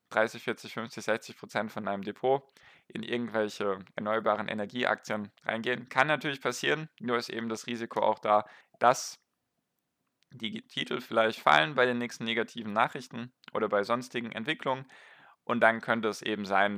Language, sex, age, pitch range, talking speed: German, male, 10-29, 105-120 Hz, 155 wpm